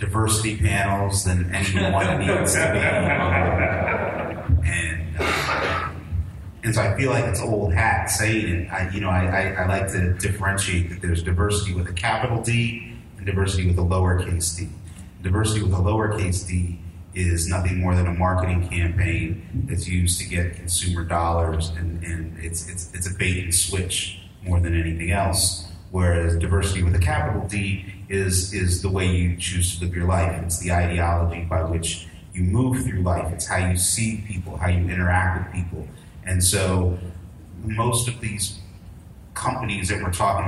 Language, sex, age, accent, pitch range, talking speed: English, male, 30-49, American, 90-100 Hz, 175 wpm